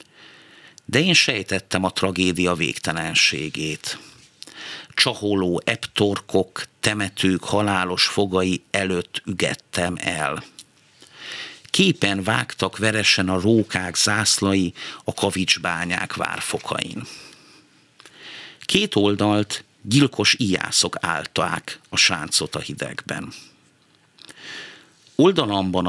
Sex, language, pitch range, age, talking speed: male, Hungarian, 95-115 Hz, 50-69, 75 wpm